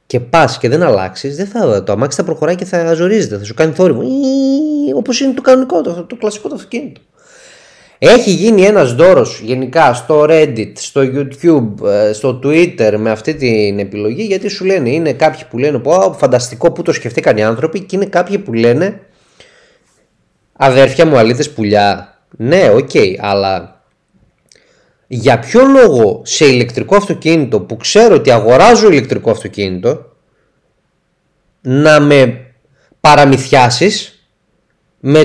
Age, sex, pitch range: 30-49, male, 125-210 Hz